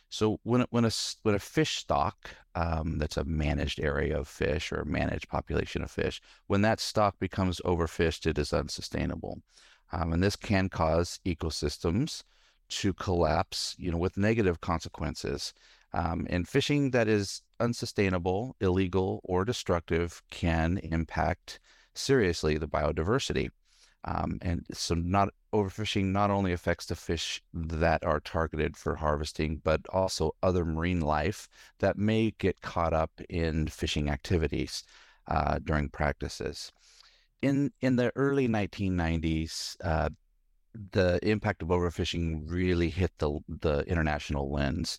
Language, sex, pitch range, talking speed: English, male, 80-95 Hz, 135 wpm